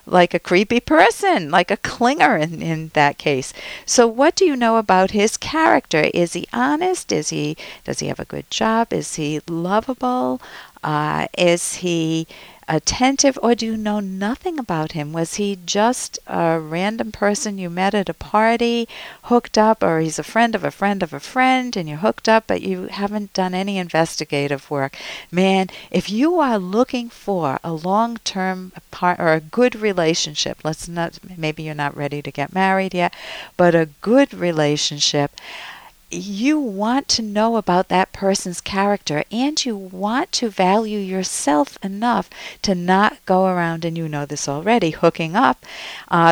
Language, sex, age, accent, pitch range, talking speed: English, female, 60-79, American, 155-225 Hz, 170 wpm